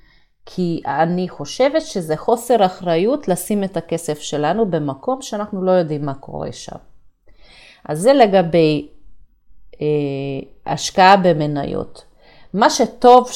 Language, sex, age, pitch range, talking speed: Hebrew, female, 30-49, 150-210 Hz, 110 wpm